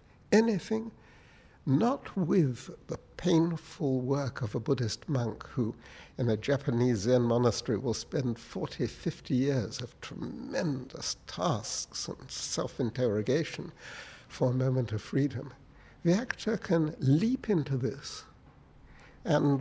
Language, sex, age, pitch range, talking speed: English, male, 60-79, 120-160 Hz, 115 wpm